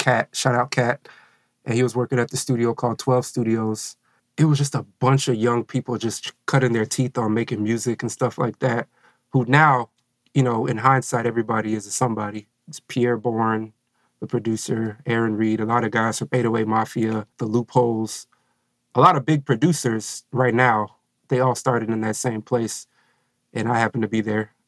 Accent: American